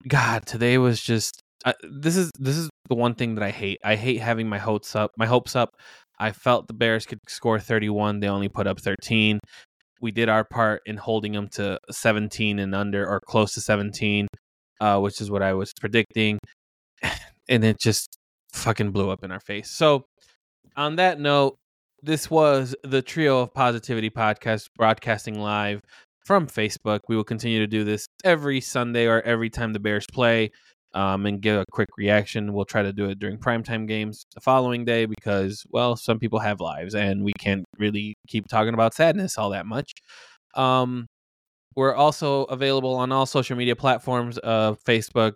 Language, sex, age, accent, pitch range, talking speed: English, male, 20-39, American, 105-125 Hz, 185 wpm